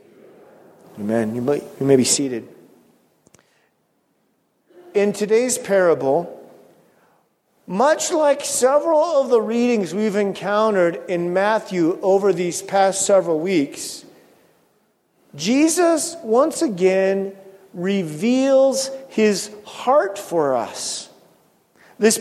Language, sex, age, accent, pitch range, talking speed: English, male, 40-59, American, 190-235 Hz, 90 wpm